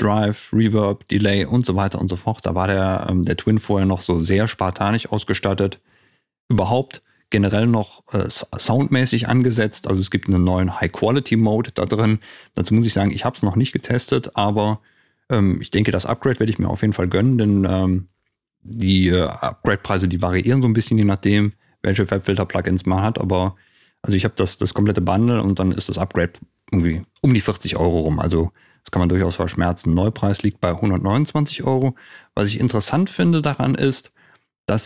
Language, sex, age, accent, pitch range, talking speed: German, male, 40-59, German, 95-115 Hz, 190 wpm